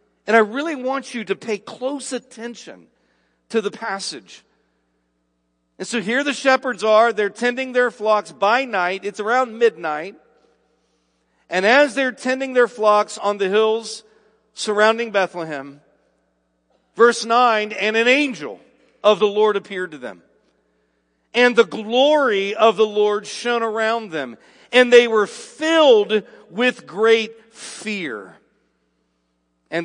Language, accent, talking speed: English, American, 135 wpm